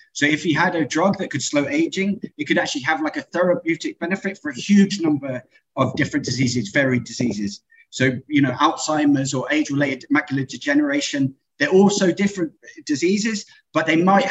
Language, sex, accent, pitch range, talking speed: English, male, British, 150-245 Hz, 180 wpm